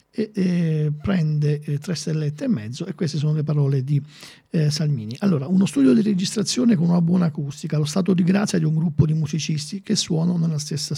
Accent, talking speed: native, 210 wpm